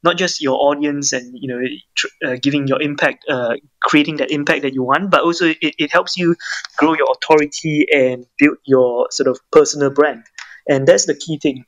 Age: 20-39